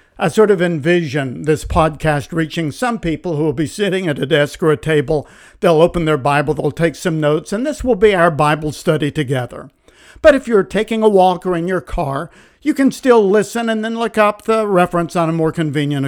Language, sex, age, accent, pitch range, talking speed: English, male, 60-79, American, 150-200 Hz, 220 wpm